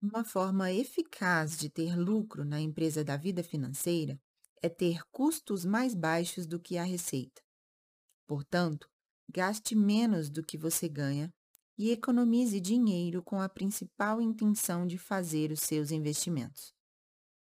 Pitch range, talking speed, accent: 150-200 Hz, 135 wpm, Brazilian